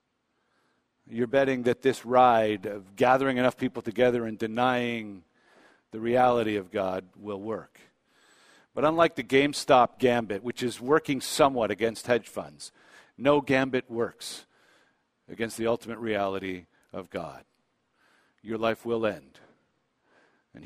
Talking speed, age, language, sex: 130 wpm, 50-69, English, male